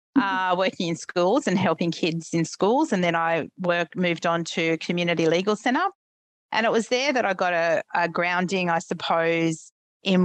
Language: English